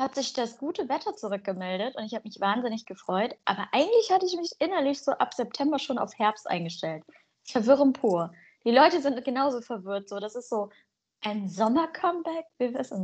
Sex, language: female, German